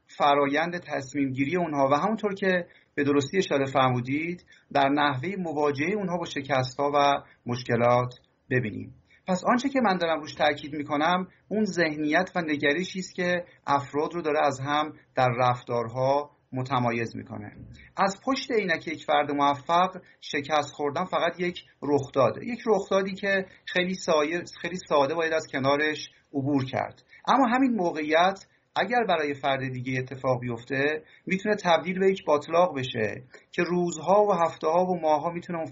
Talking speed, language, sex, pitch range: 155 wpm, Persian, male, 135-175 Hz